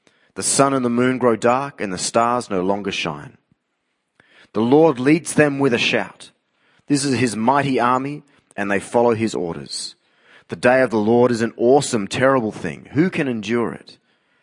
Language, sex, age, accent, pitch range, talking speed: English, male, 30-49, Australian, 110-140 Hz, 185 wpm